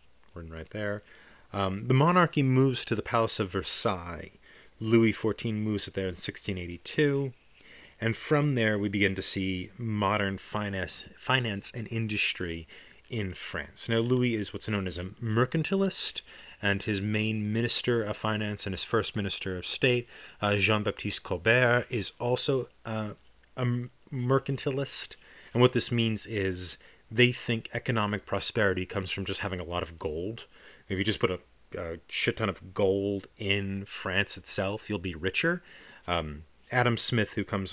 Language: English